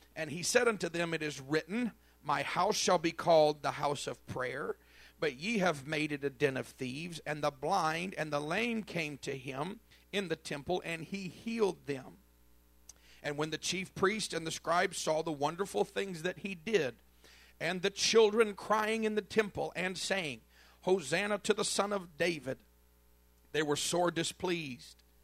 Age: 50-69